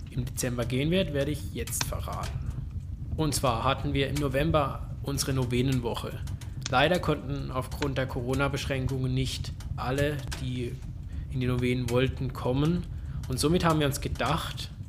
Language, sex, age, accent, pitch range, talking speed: German, male, 20-39, German, 120-140 Hz, 140 wpm